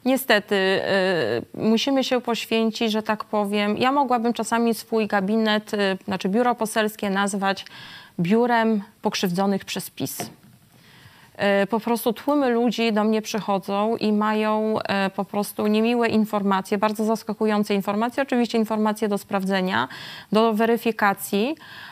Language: Polish